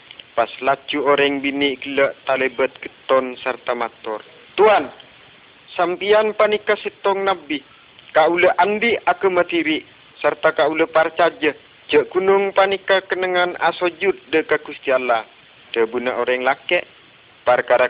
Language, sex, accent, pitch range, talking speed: Indonesian, male, native, 135-190 Hz, 115 wpm